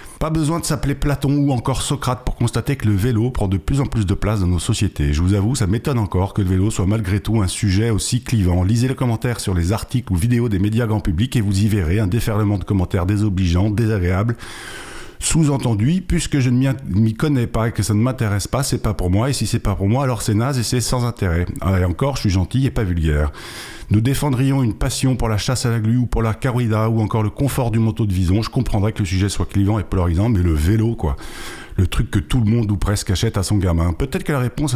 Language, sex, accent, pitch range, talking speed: French, male, French, 100-125 Hz, 260 wpm